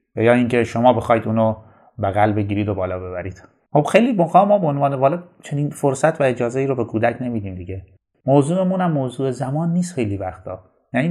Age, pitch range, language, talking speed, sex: 30-49, 105-145 Hz, Persian, 190 wpm, male